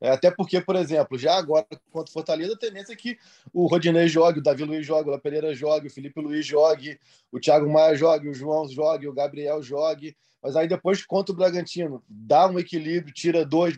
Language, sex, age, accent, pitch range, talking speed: Portuguese, male, 20-39, Brazilian, 150-185 Hz, 215 wpm